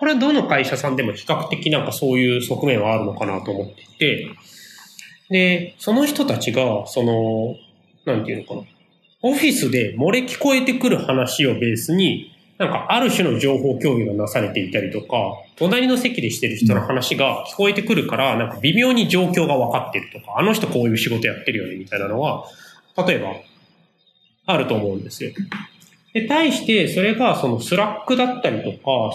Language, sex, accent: Japanese, male, native